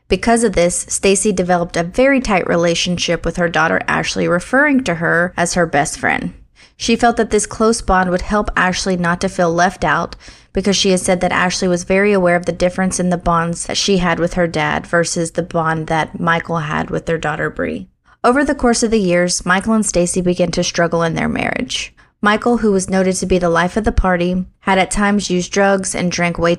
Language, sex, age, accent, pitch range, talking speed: English, female, 20-39, American, 170-200 Hz, 225 wpm